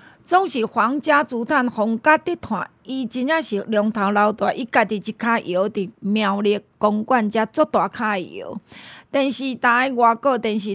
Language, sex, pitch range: Chinese, female, 220-290 Hz